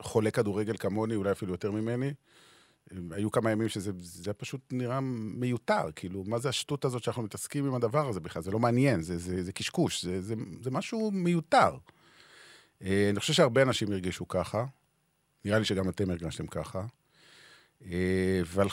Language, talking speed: Hebrew, 160 wpm